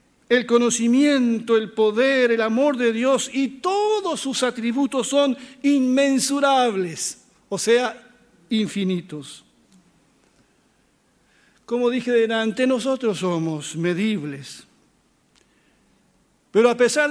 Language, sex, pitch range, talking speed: Spanish, male, 205-250 Hz, 90 wpm